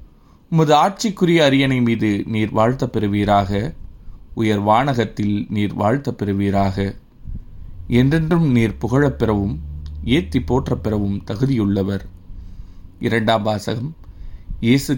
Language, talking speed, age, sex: Tamil, 85 wpm, 30-49, male